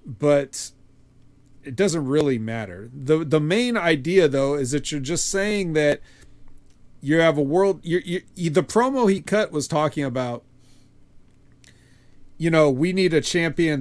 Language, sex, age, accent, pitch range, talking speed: English, male, 40-59, American, 130-180 Hz, 155 wpm